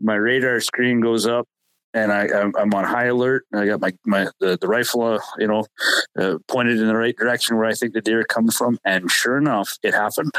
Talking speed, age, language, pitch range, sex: 220 wpm, 30-49, English, 105-120 Hz, male